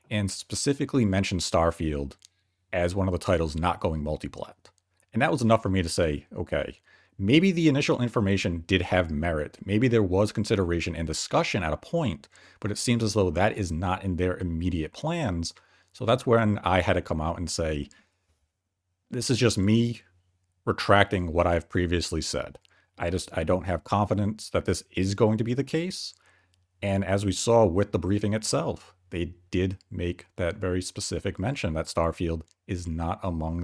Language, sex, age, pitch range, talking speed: English, male, 40-59, 85-110 Hz, 180 wpm